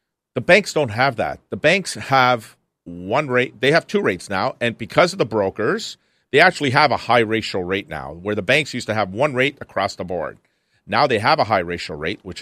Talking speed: 225 wpm